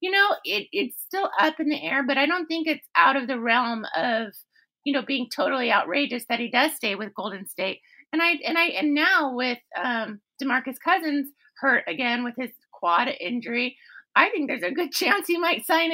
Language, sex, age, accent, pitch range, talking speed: English, female, 30-49, American, 255-315 Hz, 210 wpm